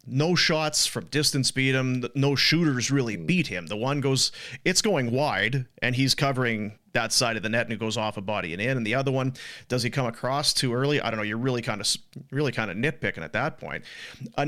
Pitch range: 105-135 Hz